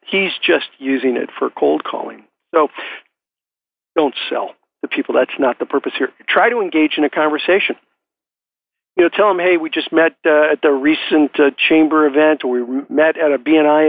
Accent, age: American, 50-69